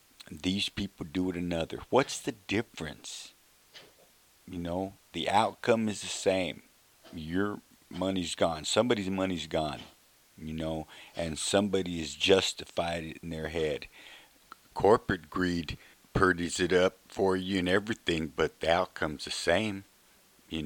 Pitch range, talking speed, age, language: 80-95 Hz, 135 wpm, 50-69, English